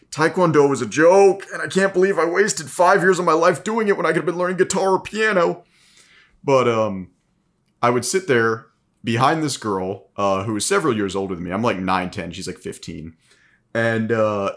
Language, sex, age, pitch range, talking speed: English, male, 30-49, 105-140 Hz, 215 wpm